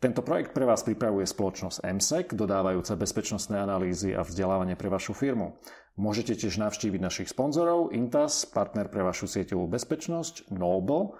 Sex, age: male, 40-59